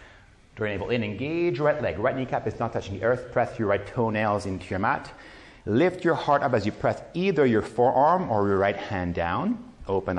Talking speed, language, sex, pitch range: 205 wpm, Hebrew, male, 100-145 Hz